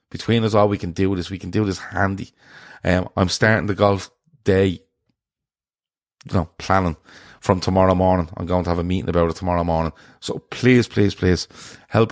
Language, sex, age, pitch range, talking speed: English, male, 30-49, 90-115 Hz, 195 wpm